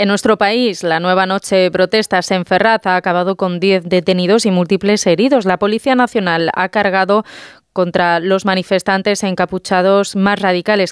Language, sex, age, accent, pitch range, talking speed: Spanish, female, 20-39, Spanish, 180-205 Hz, 160 wpm